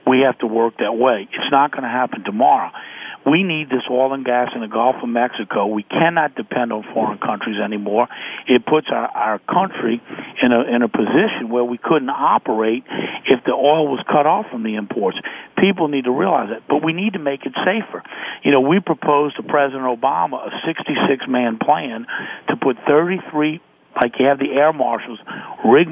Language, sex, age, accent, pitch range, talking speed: French, male, 50-69, American, 120-150 Hz, 195 wpm